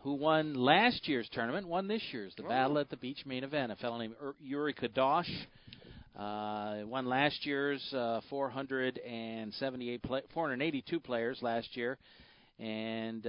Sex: male